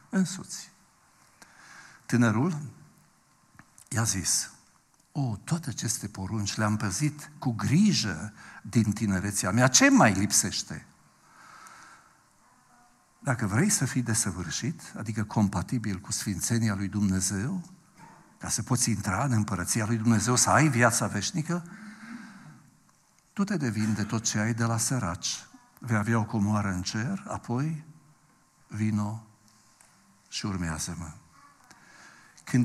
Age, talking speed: 60-79, 115 wpm